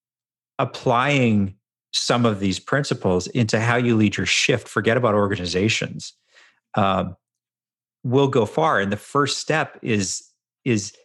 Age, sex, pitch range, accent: 40-59, male, 95-120 Hz, American